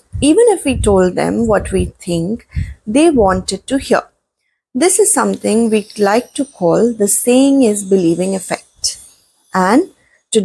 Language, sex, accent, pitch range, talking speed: English, female, Indian, 190-265 Hz, 150 wpm